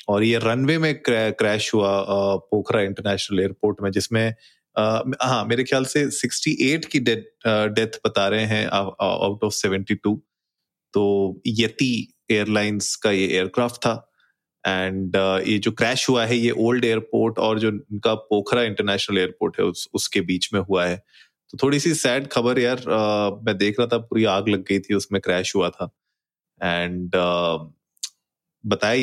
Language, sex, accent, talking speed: Hindi, male, native, 160 wpm